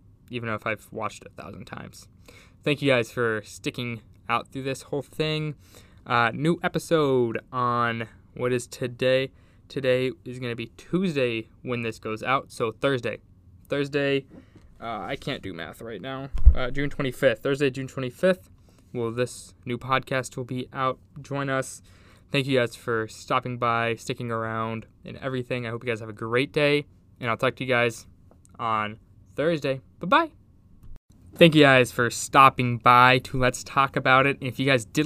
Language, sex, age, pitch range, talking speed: English, male, 20-39, 115-135 Hz, 175 wpm